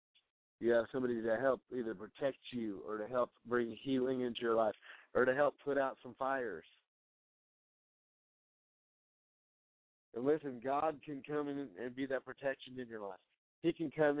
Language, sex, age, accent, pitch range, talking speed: English, male, 50-69, American, 110-135 Hz, 165 wpm